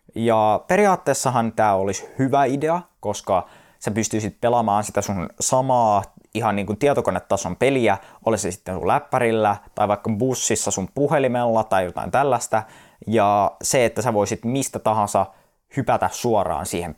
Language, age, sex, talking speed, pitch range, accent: Finnish, 20-39, male, 140 wpm, 100-125 Hz, native